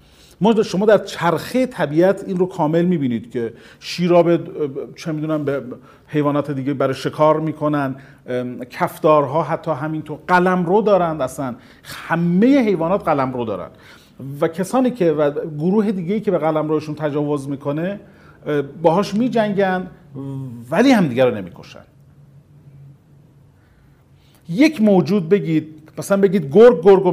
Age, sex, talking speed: 40-59, male, 125 wpm